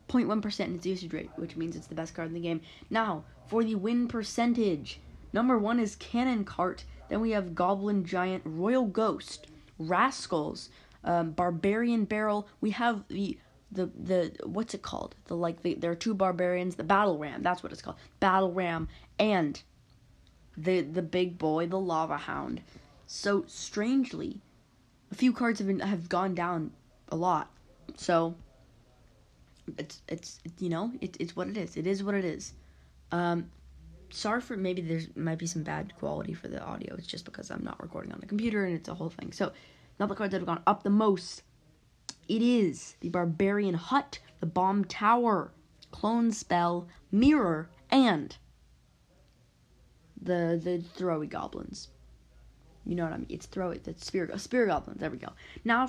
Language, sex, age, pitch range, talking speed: English, female, 20-39, 170-210 Hz, 175 wpm